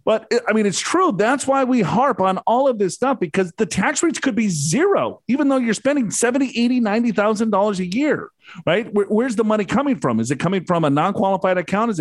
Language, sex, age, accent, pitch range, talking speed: English, male, 40-59, American, 180-225 Hz, 220 wpm